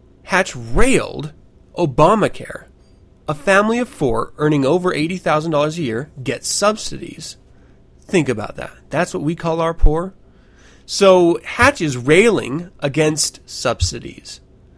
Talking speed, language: 120 wpm, English